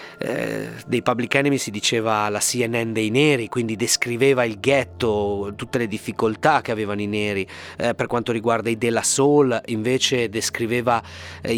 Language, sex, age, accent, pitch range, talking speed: Italian, male, 30-49, native, 100-120 Hz, 165 wpm